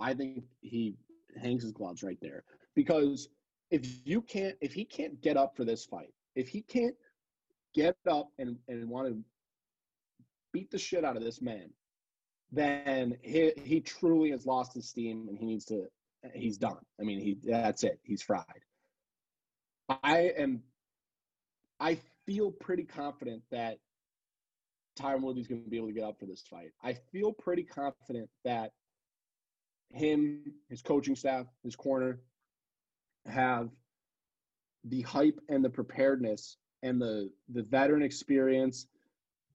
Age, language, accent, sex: 30-49, English, American, male